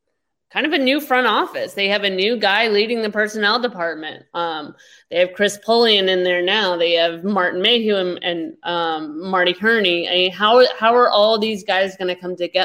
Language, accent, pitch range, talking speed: English, American, 175-230 Hz, 200 wpm